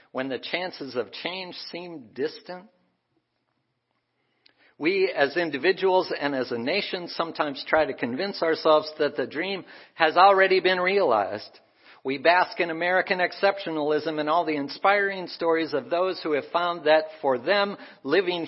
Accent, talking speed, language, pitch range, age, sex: American, 145 wpm, English, 145-185 Hz, 50-69, male